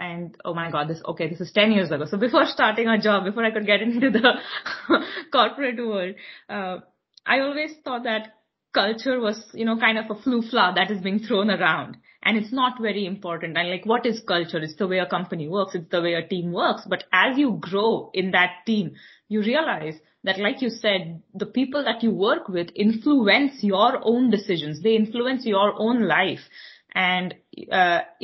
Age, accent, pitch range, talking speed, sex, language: 20-39, Indian, 185-230 Hz, 200 wpm, female, English